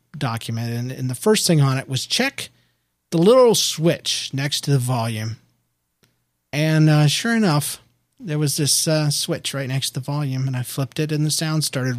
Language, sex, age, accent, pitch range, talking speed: English, male, 40-59, American, 125-155 Hz, 195 wpm